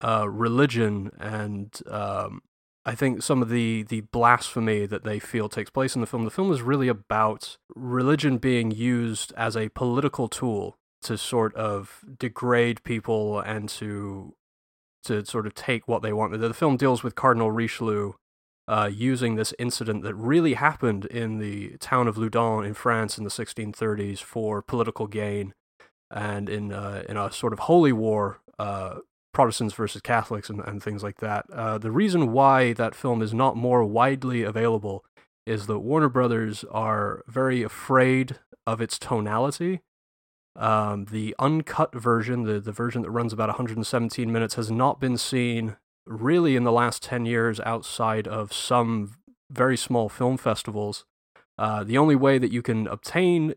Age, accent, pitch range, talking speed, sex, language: 30-49, American, 105-125 Hz, 165 wpm, male, English